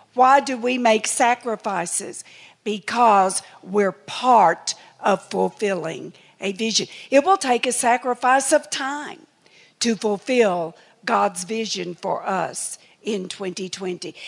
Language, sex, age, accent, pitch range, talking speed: English, female, 50-69, American, 205-265 Hz, 115 wpm